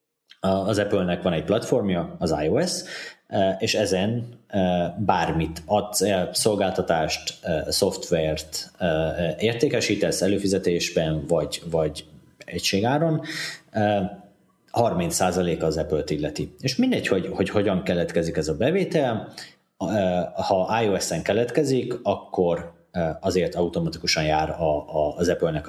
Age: 30-49